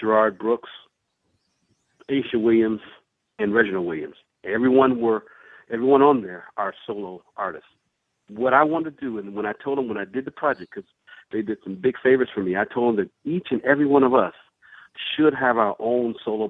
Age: 50-69